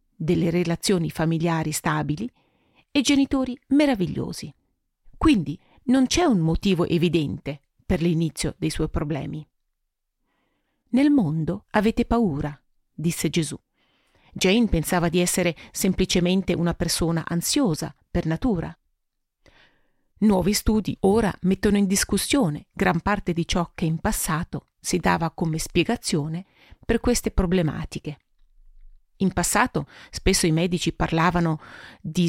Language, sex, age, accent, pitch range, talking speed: Italian, female, 40-59, native, 160-210 Hz, 115 wpm